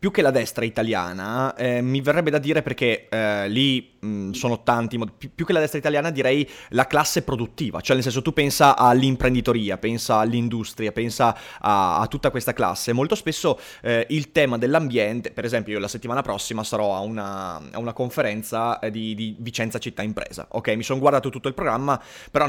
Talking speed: 185 wpm